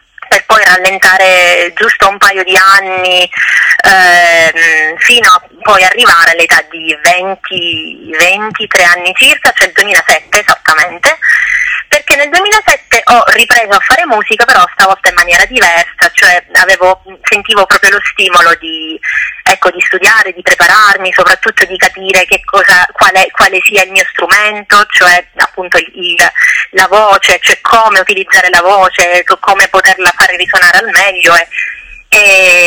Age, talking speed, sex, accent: 20-39, 145 wpm, female, native